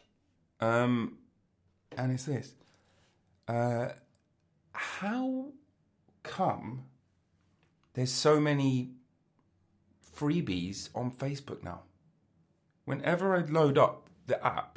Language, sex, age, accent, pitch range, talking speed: English, male, 30-49, British, 90-125 Hz, 80 wpm